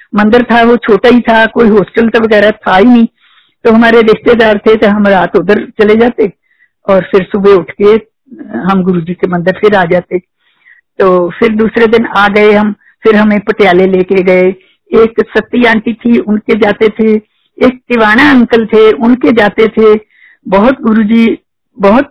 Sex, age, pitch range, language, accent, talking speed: female, 60-79, 200-235 Hz, Hindi, native, 135 wpm